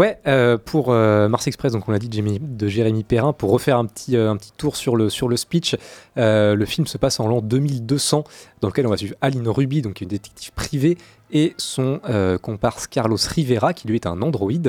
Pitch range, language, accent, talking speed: 100-135 Hz, French, French, 235 wpm